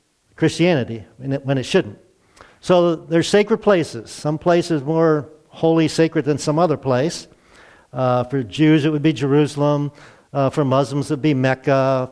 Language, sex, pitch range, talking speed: English, male, 135-165 Hz, 165 wpm